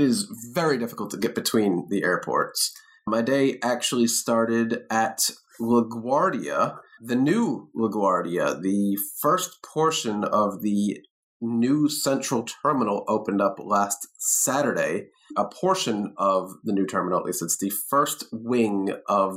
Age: 30-49